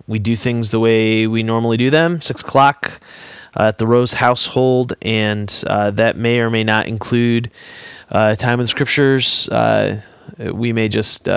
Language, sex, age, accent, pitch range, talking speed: English, male, 20-39, American, 105-120 Hz, 175 wpm